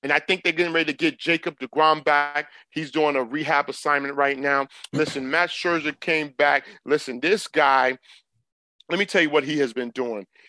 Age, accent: 40-59, American